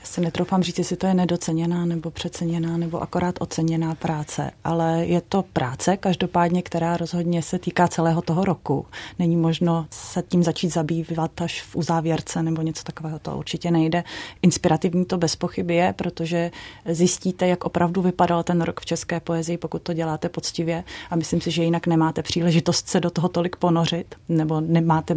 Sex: female